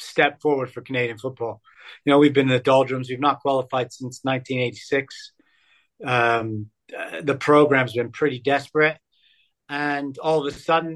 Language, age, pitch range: English, 40-59, 130-160 Hz